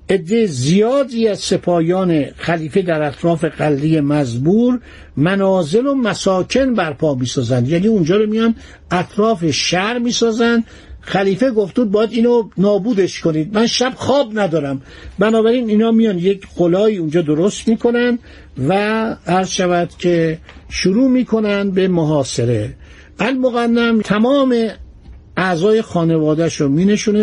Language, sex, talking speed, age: Persian, male, 120 wpm, 60-79